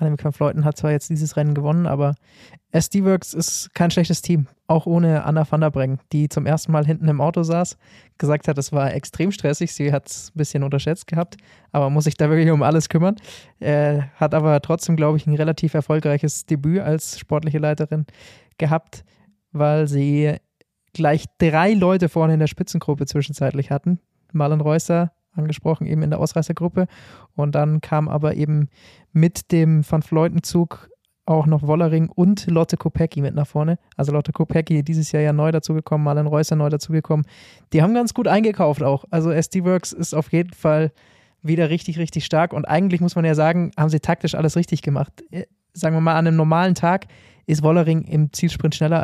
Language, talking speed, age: German, 180 wpm, 20-39